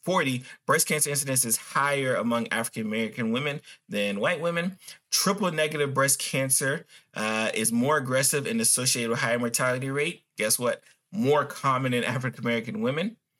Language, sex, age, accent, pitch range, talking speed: English, male, 30-49, American, 115-150 Hz, 150 wpm